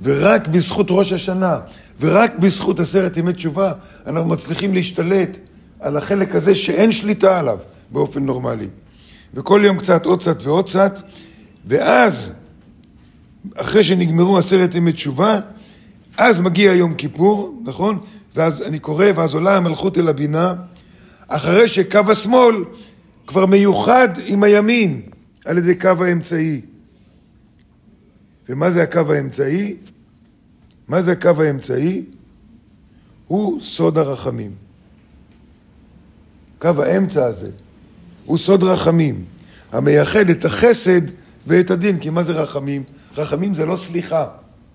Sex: male